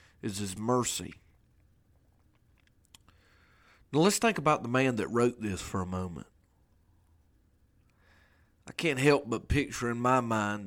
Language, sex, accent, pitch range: English, male, American, 95-115 Hz